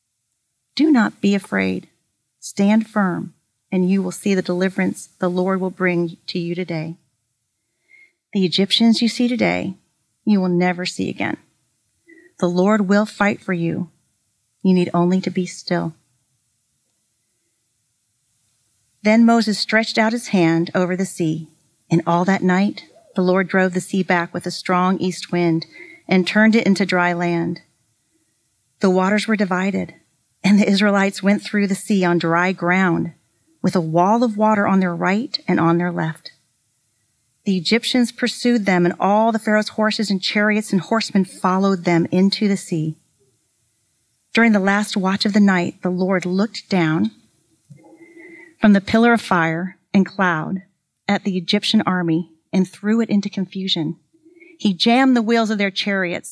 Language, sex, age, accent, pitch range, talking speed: English, female, 40-59, American, 165-210 Hz, 160 wpm